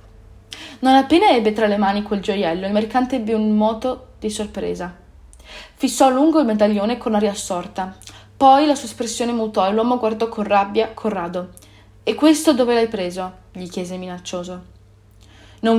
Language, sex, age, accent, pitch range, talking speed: Italian, female, 20-39, native, 190-230 Hz, 165 wpm